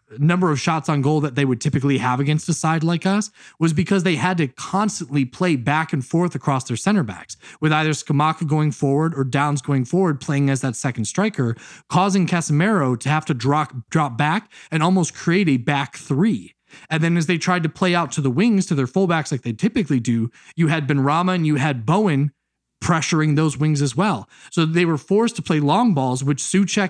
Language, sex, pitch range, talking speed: English, male, 140-170 Hz, 215 wpm